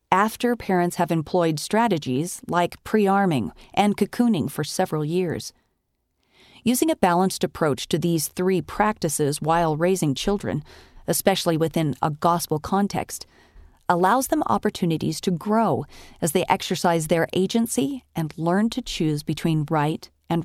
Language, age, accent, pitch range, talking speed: English, 40-59, American, 150-200 Hz, 130 wpm